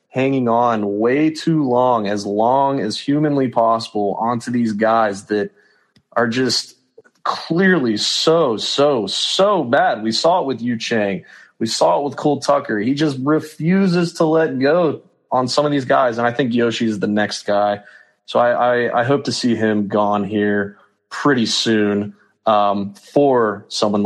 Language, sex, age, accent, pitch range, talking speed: English, male, 20-39, American, 105-140 Hz, 165 wpm